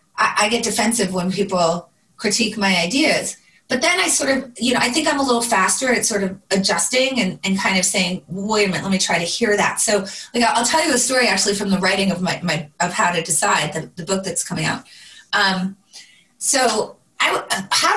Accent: American